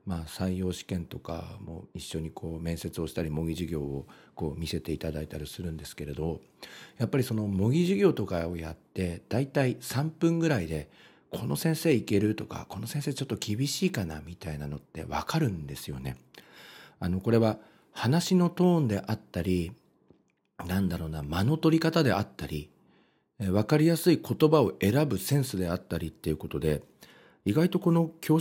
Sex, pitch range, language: male, 85-115 Hz, Japanese